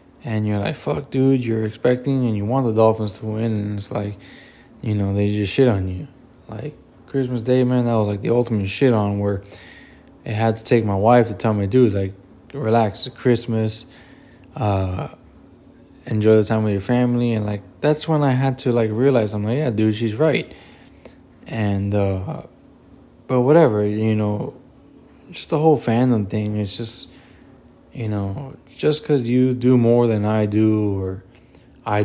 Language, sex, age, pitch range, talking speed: English, male, 20-39, 105-125 Hz, 180 wpm